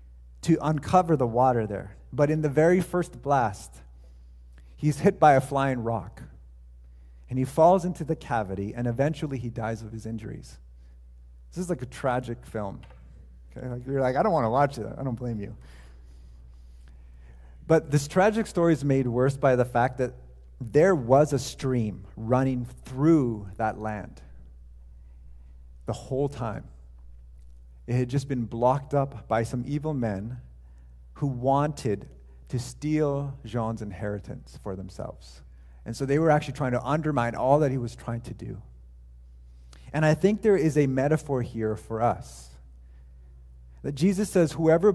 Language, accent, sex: English, American, male